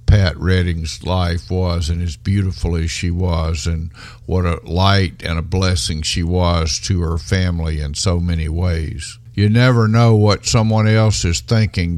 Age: 50-69